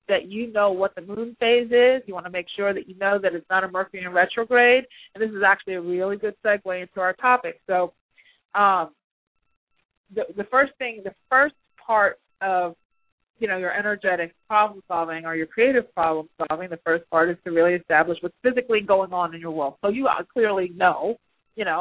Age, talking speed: 40-59, 200 wpm